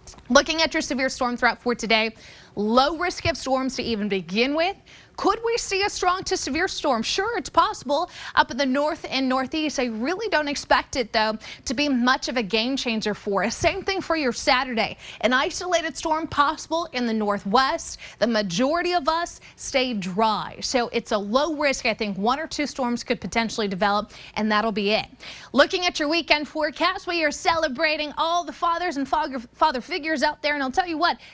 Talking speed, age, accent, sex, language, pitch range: 200 wpm, 30-49, American, female, English, 225-310 Hz